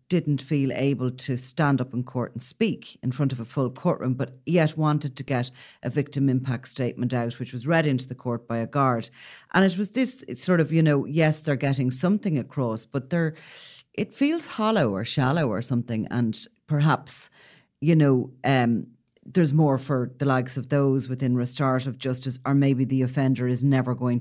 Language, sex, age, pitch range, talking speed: English, female, 40-59, 125-155 Hz, 195 wpm